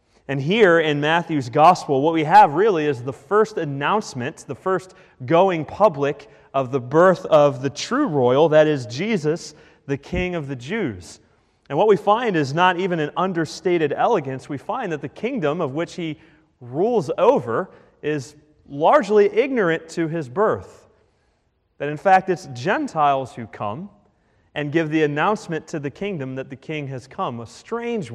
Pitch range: 135-185 Hz